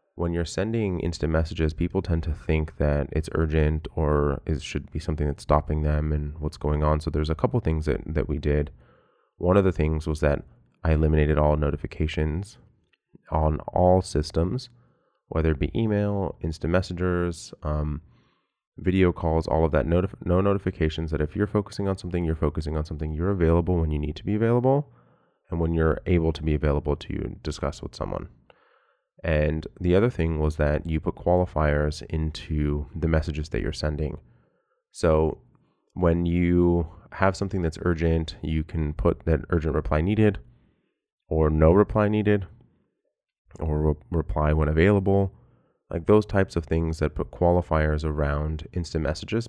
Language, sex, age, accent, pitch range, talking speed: English, male, 30-49, American, 75-90 Hz, 165 wpm